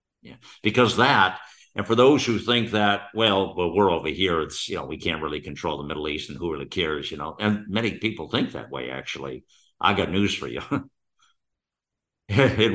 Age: 60-79